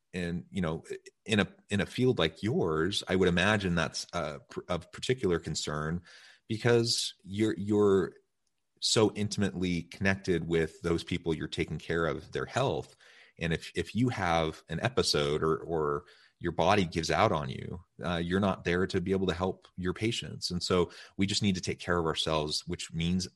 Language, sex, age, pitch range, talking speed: English, male, 30-49, 80-100 Hz, 180 wpm